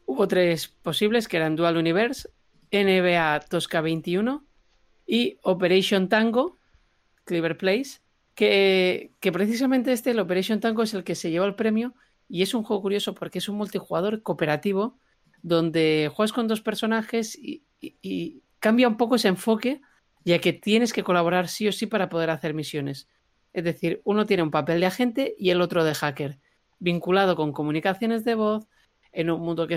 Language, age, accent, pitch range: Spanish, 40-59, Spanish, 160-210 Hz